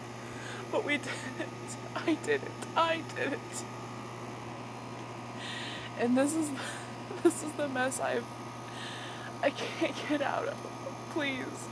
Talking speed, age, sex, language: 110 wpm, 20-39, female, English